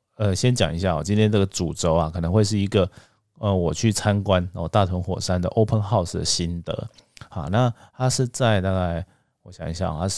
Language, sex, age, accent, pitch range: Chinese, male, 20-39, native, 85-110 Hz